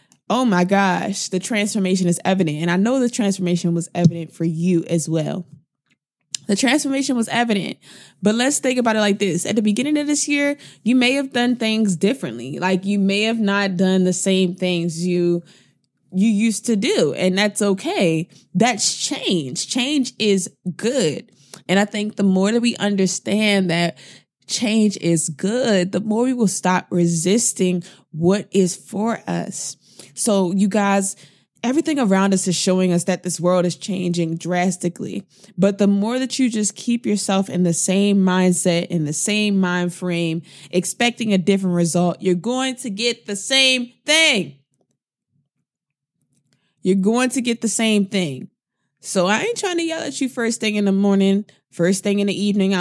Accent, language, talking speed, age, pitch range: American, English, 175 wpm, 20-39, 180-220 Hz